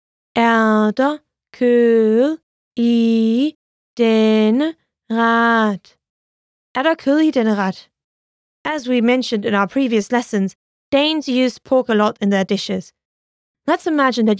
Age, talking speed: 20-39, 105 wpm